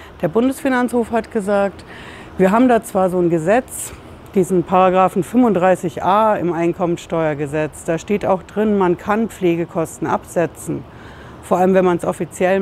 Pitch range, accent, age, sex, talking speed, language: 170-210 Hz, German, 60-79, female, 145 wpm, German